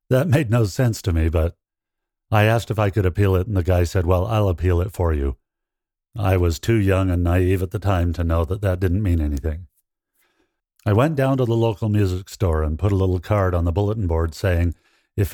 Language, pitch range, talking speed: English, 95-115 Hz, 230 wpm